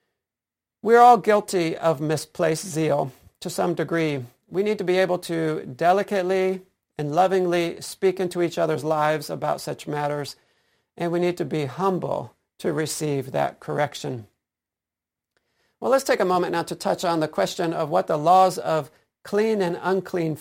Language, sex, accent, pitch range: English, male, American, 160-195 Hz